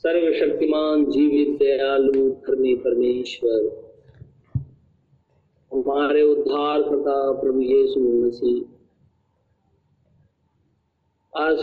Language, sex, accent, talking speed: Hindi, male, native, 55 wpm